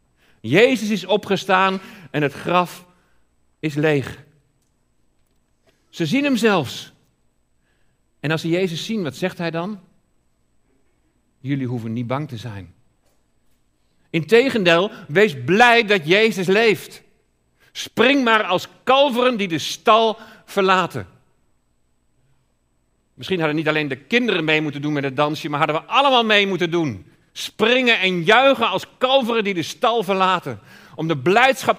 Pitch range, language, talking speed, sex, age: 140-210 Hz, Dutch, 135 wpm, male, 50-69